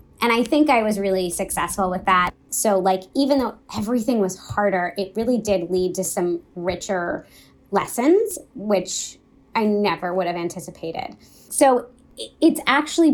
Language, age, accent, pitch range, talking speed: English, 20-39, American, 180-235 Hz, 150 wpm